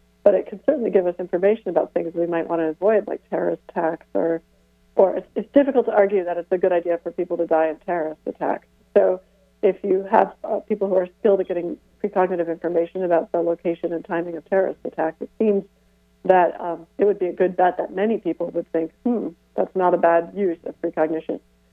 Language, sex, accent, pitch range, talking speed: English, female, American, 160-185 Hz, 220 wpm